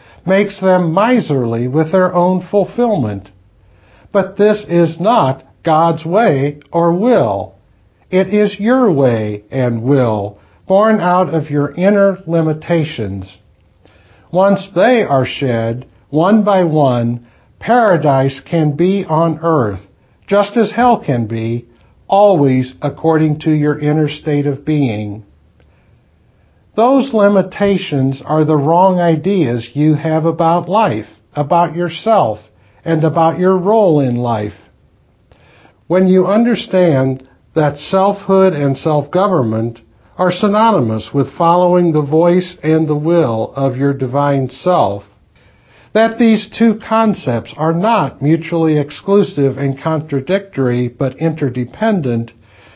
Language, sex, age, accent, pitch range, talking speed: English, male, 60-79, American, 120-185 Hz, 115 wpm